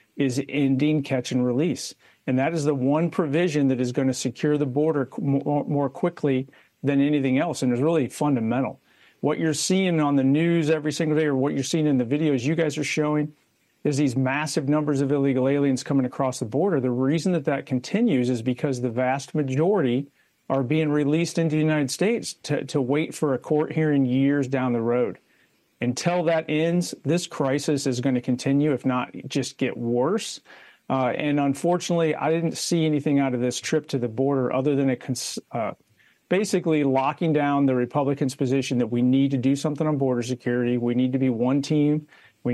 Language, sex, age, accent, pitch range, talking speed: English, male, 50-69, American, 130-150 Hz, 200 wpm